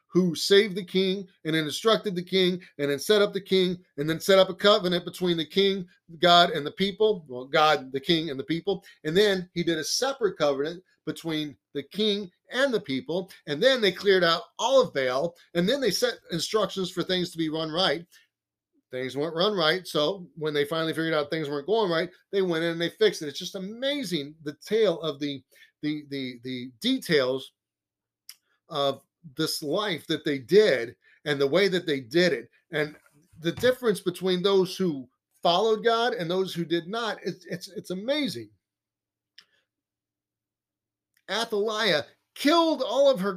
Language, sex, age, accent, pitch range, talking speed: English, male, 30-49, American, 155-205 Hz, 185 wpm